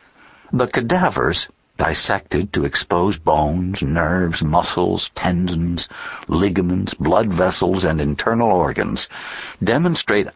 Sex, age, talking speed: male, 60-79, 95 wpm